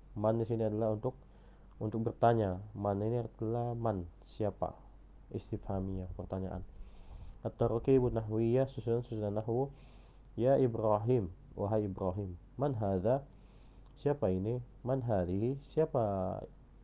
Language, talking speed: Indonesian, 105 wpm